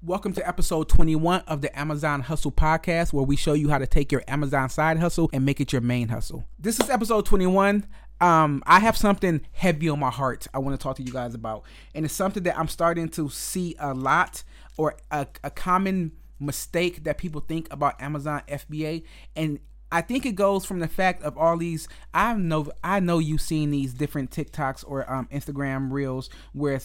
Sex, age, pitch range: male, 30-49, 135-165 Hz